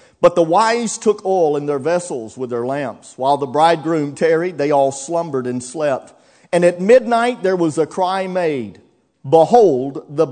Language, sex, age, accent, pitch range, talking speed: English, male, 40-59, American, 135-180 Hz, 175 wpm